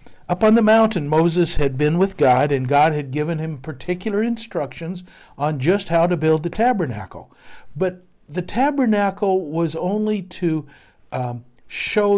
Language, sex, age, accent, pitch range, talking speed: English, male, 60-79, American, 140-190 Hz, 155 wpm